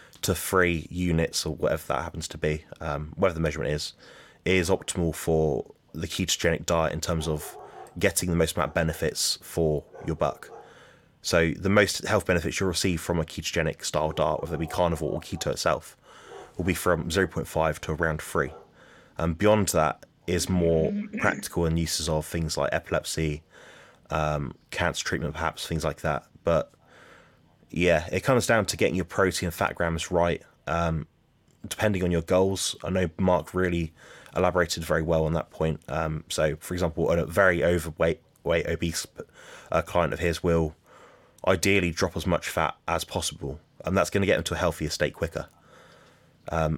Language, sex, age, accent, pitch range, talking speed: English, male, 20-39, British, 80-90 Hz, 175 wpm